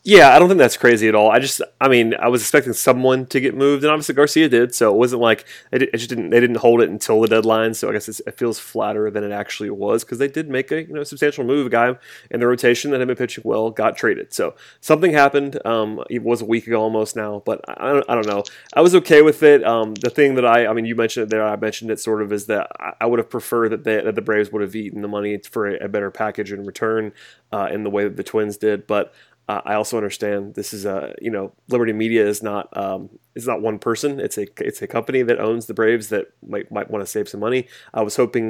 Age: 30-49